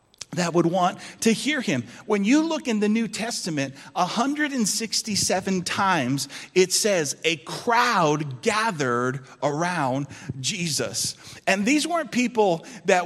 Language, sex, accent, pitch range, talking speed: English, male, American, 145-205 Hz, 125 wpm